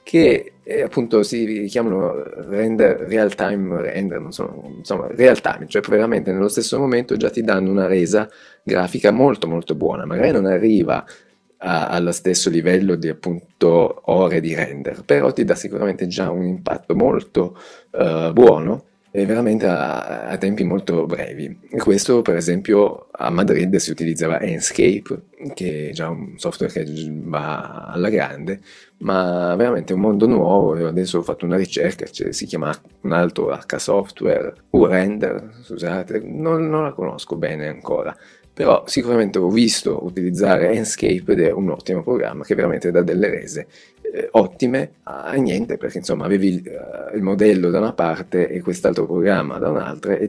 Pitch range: 85-110 Hz